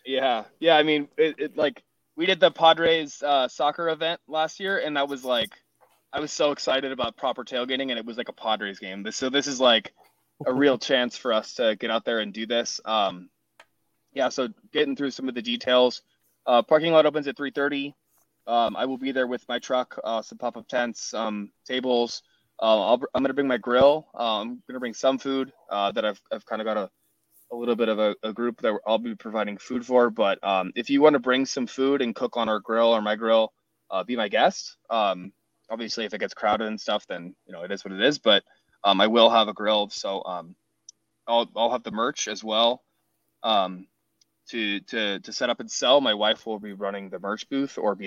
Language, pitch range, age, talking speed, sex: English, 110-140 Hz, 20-39, 235 wpm, male